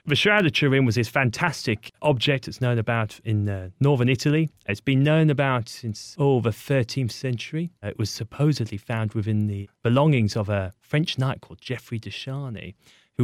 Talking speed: 180 wpm